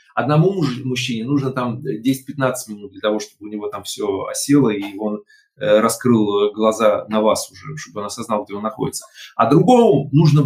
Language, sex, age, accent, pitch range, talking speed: Russian, male, 30-49, native, 115-160 Hz, 165 wpm